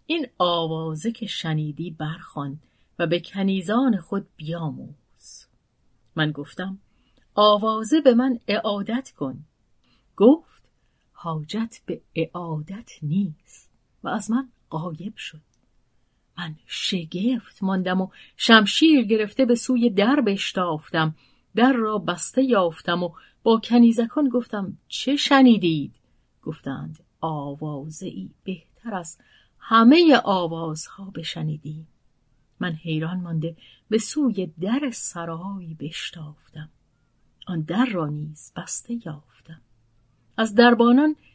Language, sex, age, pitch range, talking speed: Persian, female, 40-59, 155-225 Hz, 100 wpm